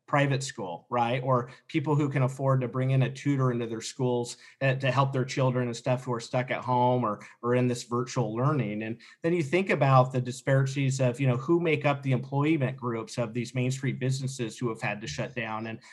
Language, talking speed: English, 230 wpm